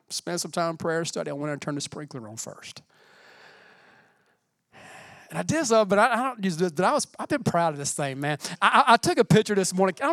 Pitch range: 170-230 Hz